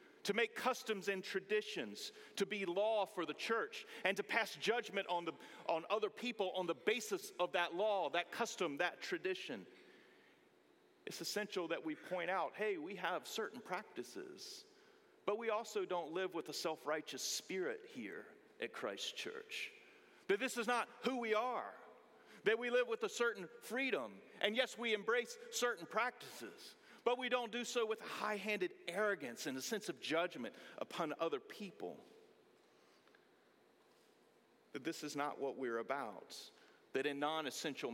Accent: American